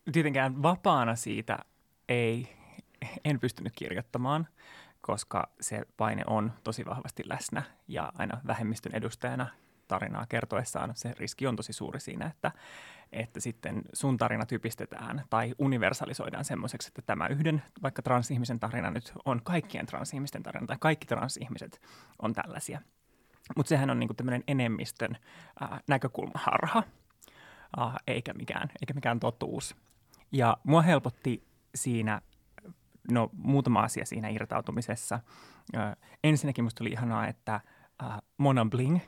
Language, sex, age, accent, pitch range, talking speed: Finnish, male, 20-39, native, 115-140 Hz, 125 wpm